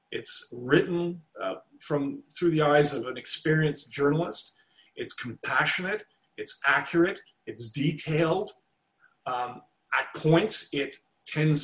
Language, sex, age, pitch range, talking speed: English, male, 40-59, 135-160 Hz, 115 wpm